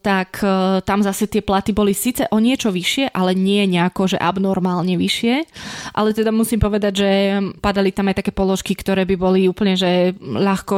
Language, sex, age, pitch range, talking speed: Slovak, female, 20-39, 180-205 Hz, 180 wpm